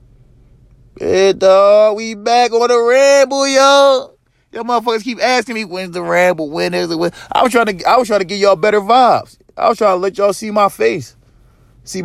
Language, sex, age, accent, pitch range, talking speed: English, male, 20-39, American, 120-180 Hz, 215 wpm